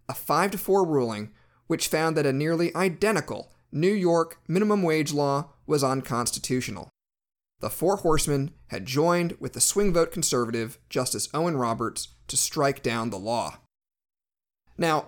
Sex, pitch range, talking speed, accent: male, 120-175 Hz, 140 wpm, American